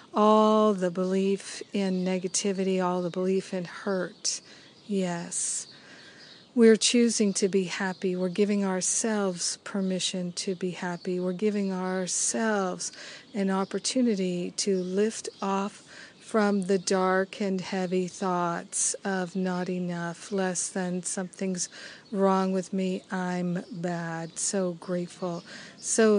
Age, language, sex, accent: 50-69, English, female, American